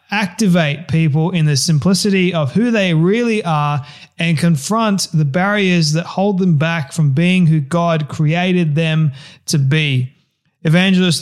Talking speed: 145 wpm